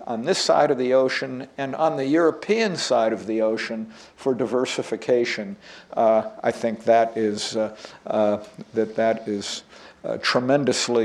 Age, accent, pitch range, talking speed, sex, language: 50-69, American, 110-140 Hz, 150 wpm, male, English